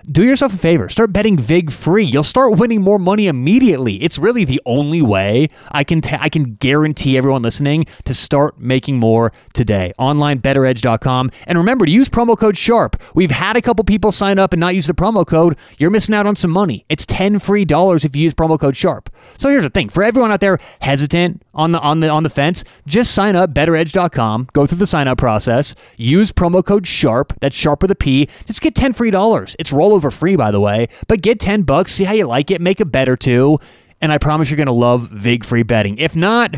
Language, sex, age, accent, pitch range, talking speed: English, male, 30-49, American, 125-180 Hz, 230 wpm